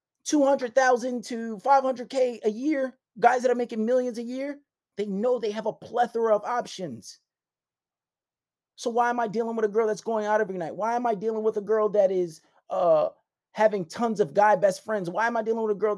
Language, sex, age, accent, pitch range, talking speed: English, male, 30-49, American, 165-235 Hz, 210 wpm